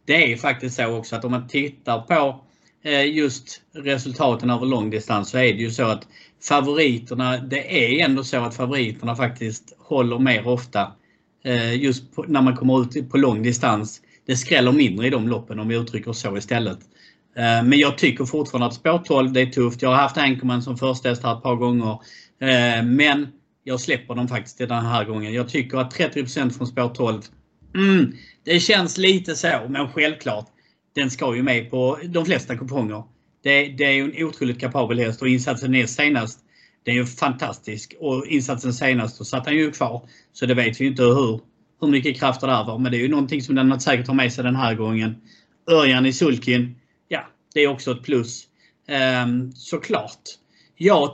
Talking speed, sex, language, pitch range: 190 wpm, male, Swedish, 120-145 Hz